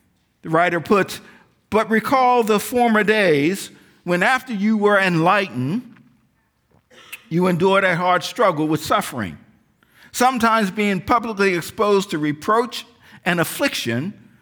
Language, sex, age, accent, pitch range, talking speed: English, male, 50-69, American, 125-195 Hz, 115 wpm